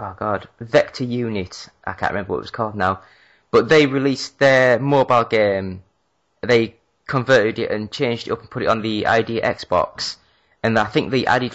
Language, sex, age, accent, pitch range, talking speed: English, male, 20-39, British, 105-130 Hz, 190 wpm